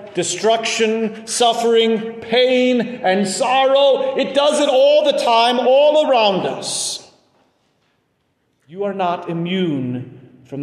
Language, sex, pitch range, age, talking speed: English, male, 175-270 Hz, 40-59, 105 wpm